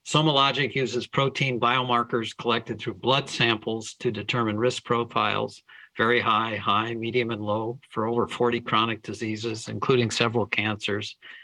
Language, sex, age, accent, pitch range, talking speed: English, male, 50-69, American, 110-125 Hz, 135 wpm